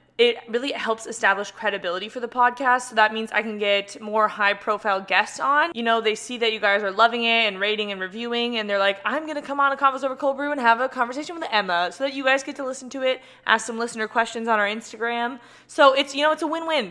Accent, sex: American, female